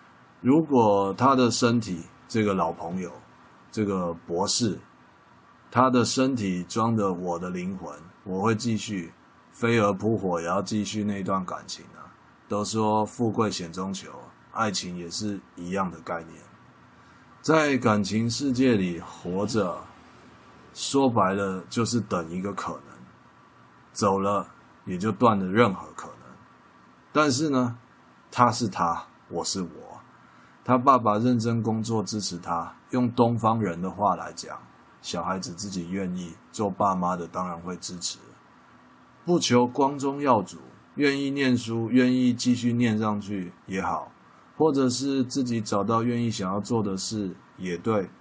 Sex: male